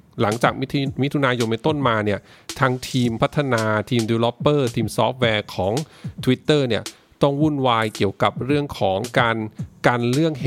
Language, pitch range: English, 115-145 Hz